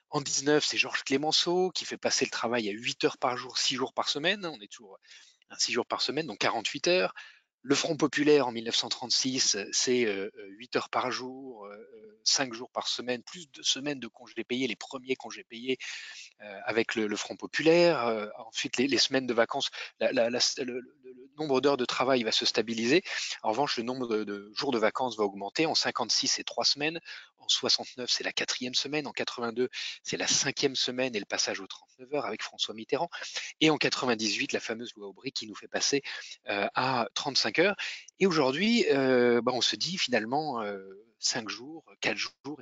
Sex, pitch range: male, 115-150 Hz